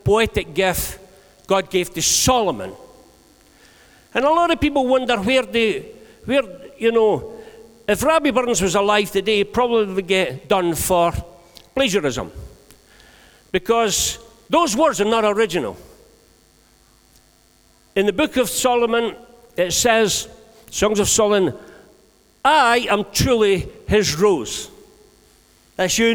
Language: English